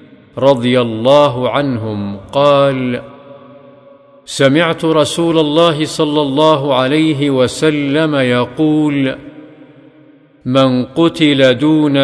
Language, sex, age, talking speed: Arabic, male, 50-69, 75 wpm